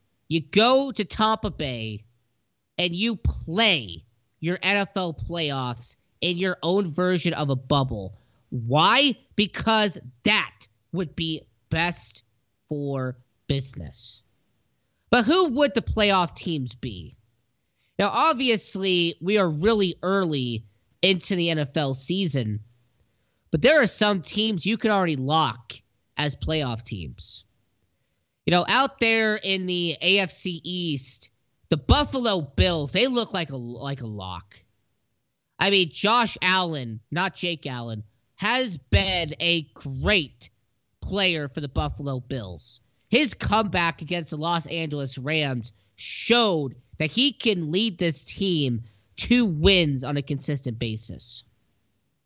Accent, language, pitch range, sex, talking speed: American, English, 120-190 Hz, male, 125 wpm